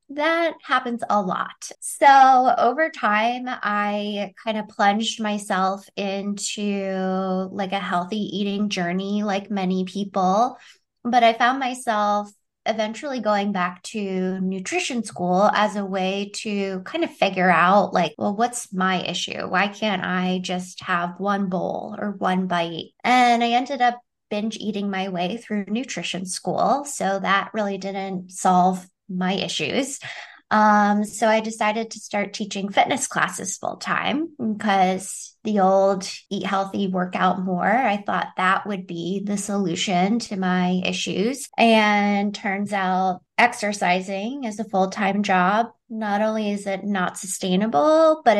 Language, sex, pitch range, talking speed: English, female, 185-220 Hz, 145 wpm